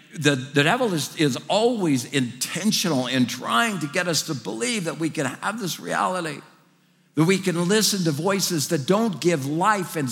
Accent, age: American, 60-79